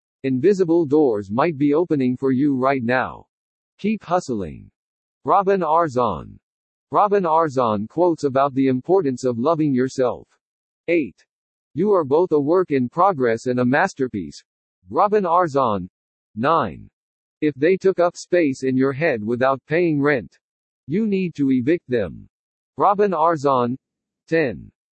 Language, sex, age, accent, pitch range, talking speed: English, male, 50-69, American, 130-175 Hz, 130 wpm